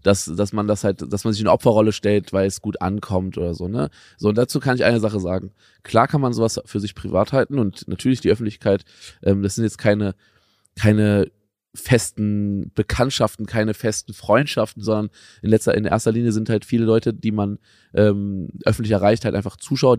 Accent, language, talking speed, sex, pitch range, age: German, German, 200 wpm, male, 100-115 Hz, 20-39